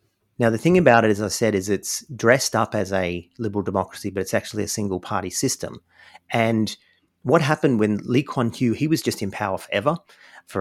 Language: English